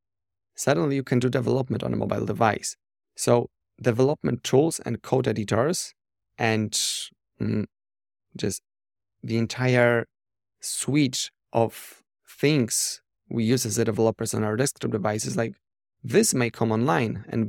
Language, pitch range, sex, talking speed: English, 110-120 Hz, male, 125 wpm